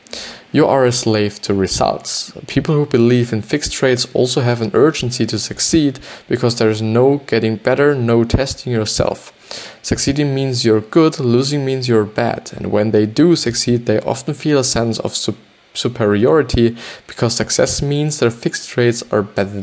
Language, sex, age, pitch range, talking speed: English, male, 20-39, 110-130 Hz, 170 wpm